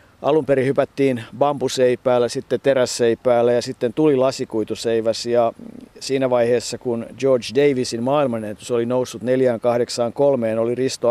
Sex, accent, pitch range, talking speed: male, native, 120-150 Hz, 120 wpm